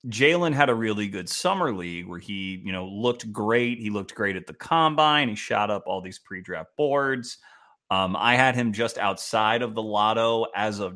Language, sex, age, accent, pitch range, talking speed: English, male, 30-49, American, 100-130 Hz, 205 wpm